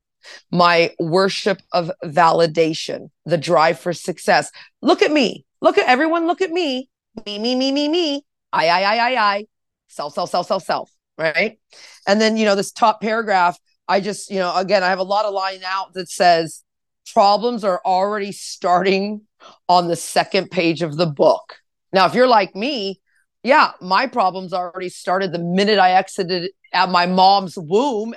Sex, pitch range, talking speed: female, 175-220 Hz, 180 wpm